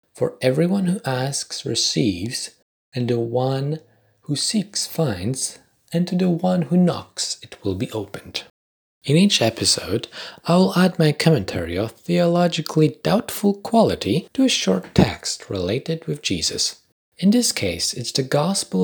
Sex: male